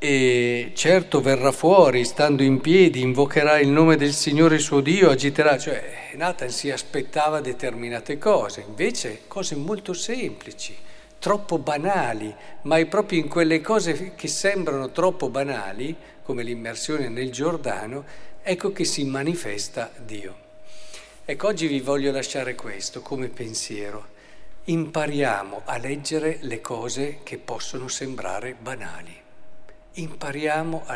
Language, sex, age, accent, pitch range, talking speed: Italian, male, 50-69, native, 135-175 Hz, 125 wpm